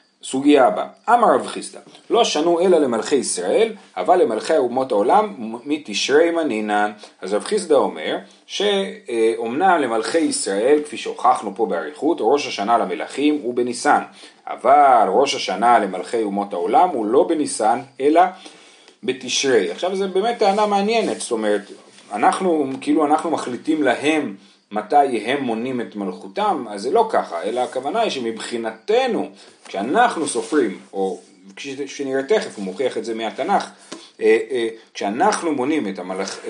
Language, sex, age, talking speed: Hebrew, male, 40-59, 135 wpm